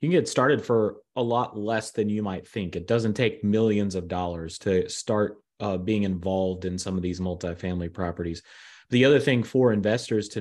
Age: 30-49